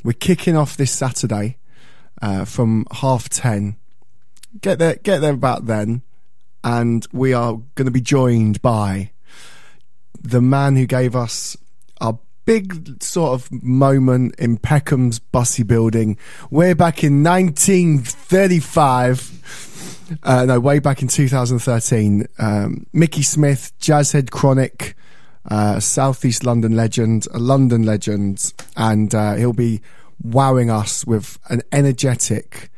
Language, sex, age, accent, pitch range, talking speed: English, male, 20-39, British, 115-145 Hz, 125 wpm